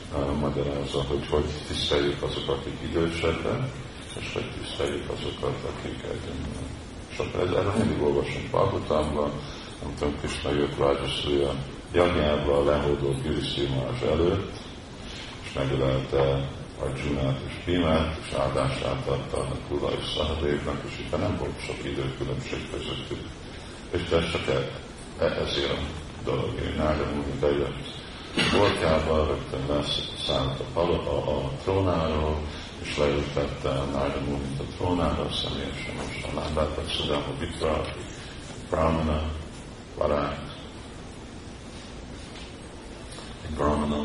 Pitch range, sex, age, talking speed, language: 70-80 Hz, male, 50-69, 120 wpm, Hungarian